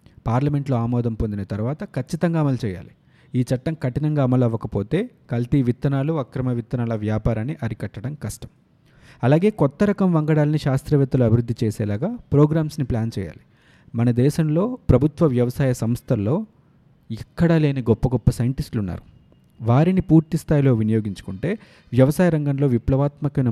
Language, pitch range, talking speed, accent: Telugu, 115-150 Hz, 120 wpm, native